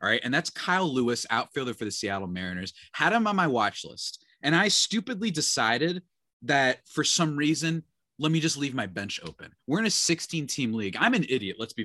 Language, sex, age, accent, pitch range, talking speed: English, male, 30-49, American, 110-155 Hz, 220 wpm